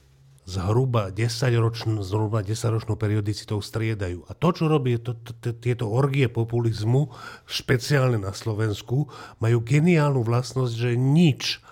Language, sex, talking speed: Slovak, male, 120 wpm